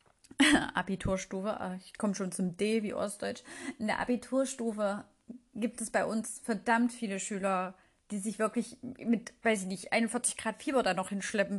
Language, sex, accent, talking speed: German, female, German, 160 wpm